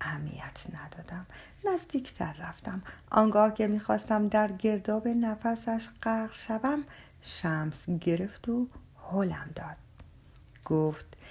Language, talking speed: Persian, 90 wpm